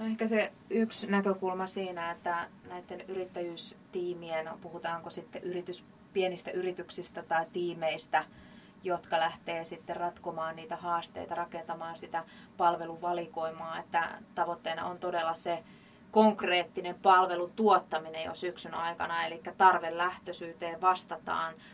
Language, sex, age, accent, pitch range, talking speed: Finnish, female, 20-39, native, 170-185 Hz, 105 wpm